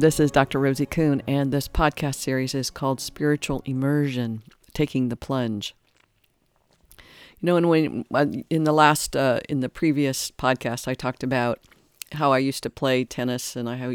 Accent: American